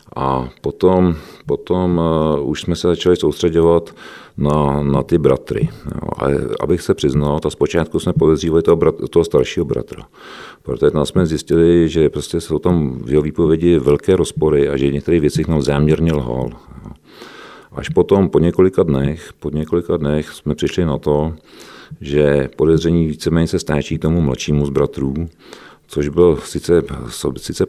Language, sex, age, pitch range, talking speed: Czech, male, 40-59, 70-85 Hz, 150 wpm